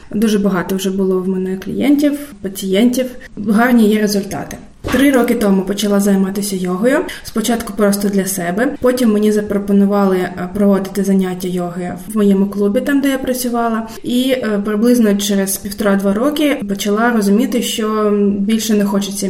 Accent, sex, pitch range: native, female, 200-225 Hz